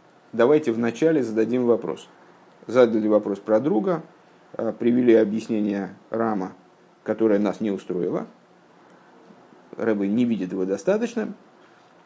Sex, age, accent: male, 50-69, native